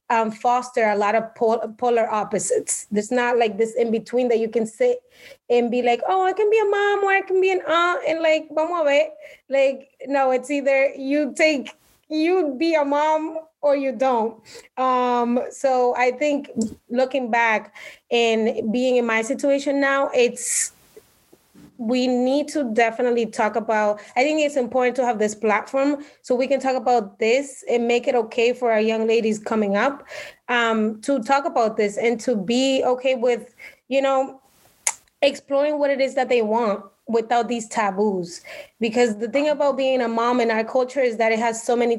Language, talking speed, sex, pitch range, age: English, 190 wpm, female, 230-280 Hz, 20-39